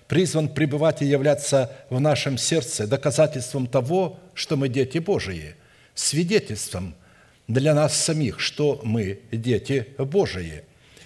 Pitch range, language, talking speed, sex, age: 130-150 Hz, Russian, 115 wpm, male, 60-79